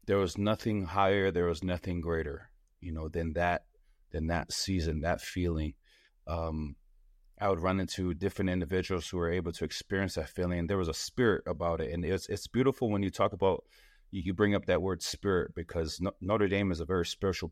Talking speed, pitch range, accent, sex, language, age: 205 wpm, 85-100 Hz, American, male, English, 30-49